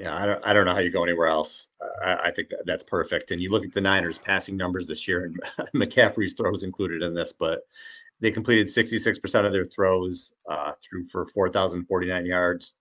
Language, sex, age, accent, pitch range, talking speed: English, male, 30-49, American, 85-110 Hz, 225 wpm